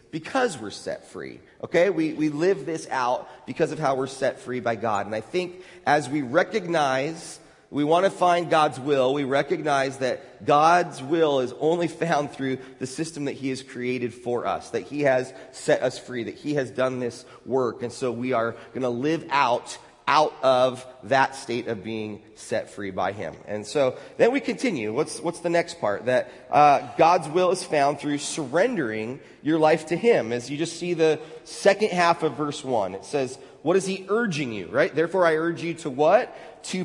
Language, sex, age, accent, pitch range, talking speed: English, male, 30-49, American, 130-175 Hz, 200 wpm